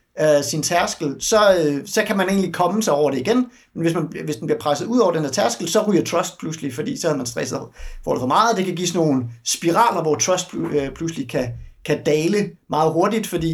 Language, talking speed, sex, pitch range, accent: Danish, 225 wpm, male, 150-205 Hz, native